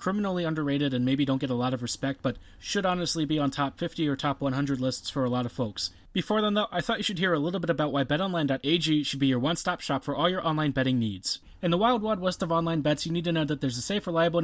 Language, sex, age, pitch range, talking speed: English, male, 30-49, 140-180 Hz, 285 wpm